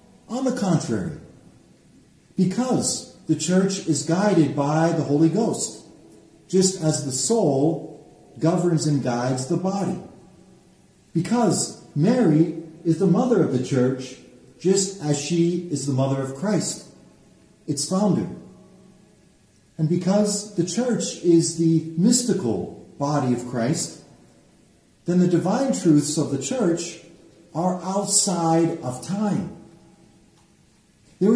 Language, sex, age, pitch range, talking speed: English, male, 40-59, 150-205 Hz, 115 wpm